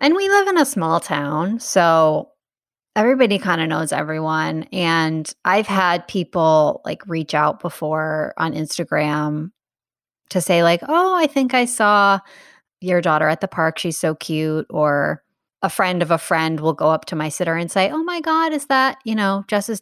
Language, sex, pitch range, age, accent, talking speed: English, female, 155-200 Hz, 30-49, American, 185 wpm